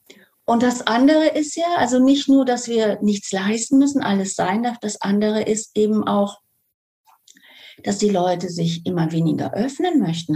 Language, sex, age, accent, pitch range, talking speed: German, female, 40-59, German, 165-215 Hz, 170 wpm